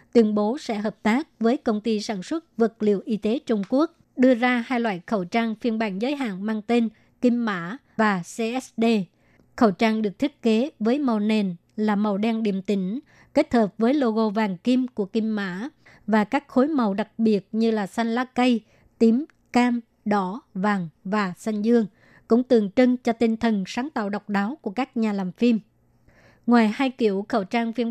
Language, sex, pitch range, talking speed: Vietnamese, male, 210-240 Hz, 200 wpm